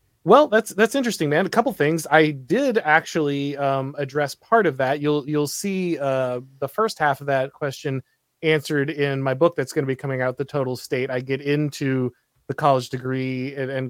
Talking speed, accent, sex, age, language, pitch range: 205 wpm, American, male, 30-49, English, 130-165 Hz